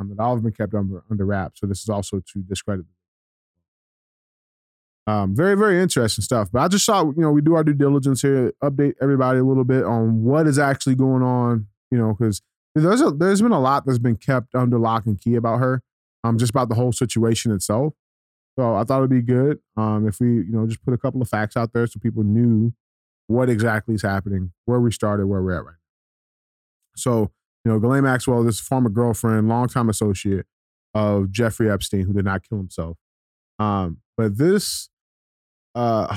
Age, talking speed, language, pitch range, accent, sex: 20-39, 205 wpm, English, 95-125 Hz, American, male